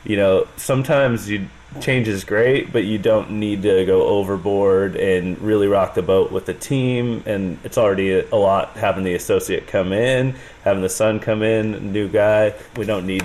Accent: American